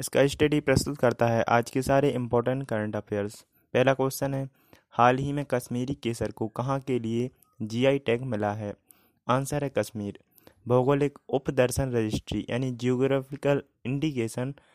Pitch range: 115-135 Hz